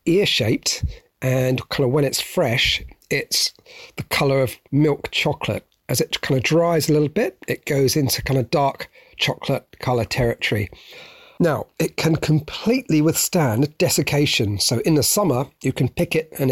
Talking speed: 165 wpm